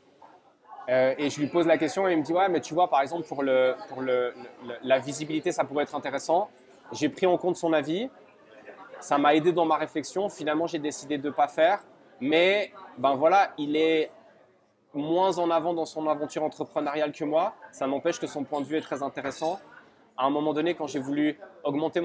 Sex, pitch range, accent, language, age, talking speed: male, 145-170 Hz, French, French, 20-39, 220 wpm